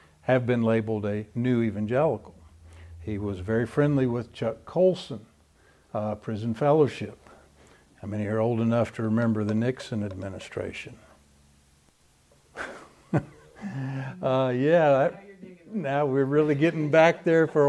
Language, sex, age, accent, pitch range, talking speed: English, male, 60-79, American, 110-140 Hz, 125 wpm